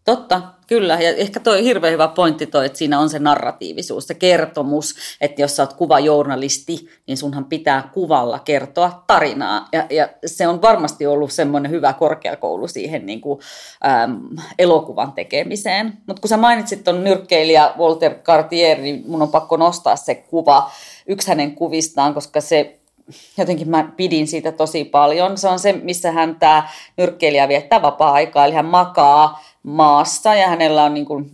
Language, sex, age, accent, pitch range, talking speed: Finnish, female, 30-49, native, 145-180 Hz, 165 wpm